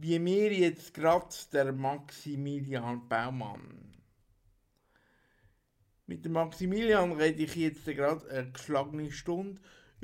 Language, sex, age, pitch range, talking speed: German, male, 60-79, 130-180 Hz, 100 wpm